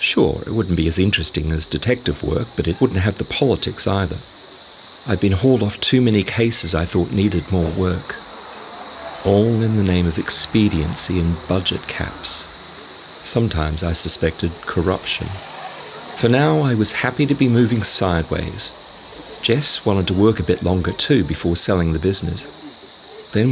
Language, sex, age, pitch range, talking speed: English, male, 40-59, 85-115 Hz, 160 wpm